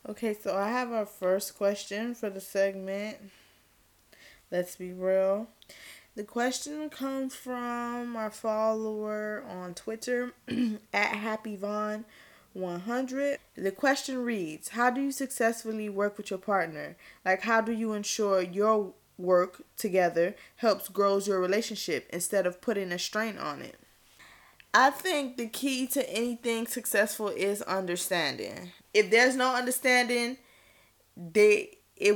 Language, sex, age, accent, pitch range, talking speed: English, female, 20-39, American, 195-240 Hz, 125 wpm